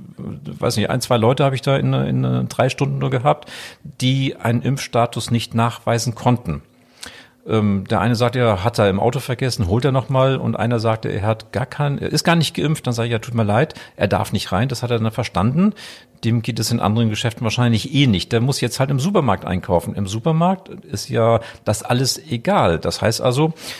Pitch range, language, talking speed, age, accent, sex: 110-135 Hz, German, 220 wpm, 40-59, German, male